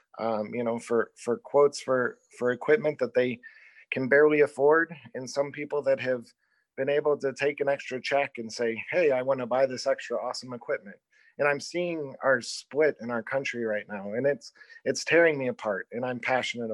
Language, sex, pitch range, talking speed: English, male, 115-145 Hz, 200 wpm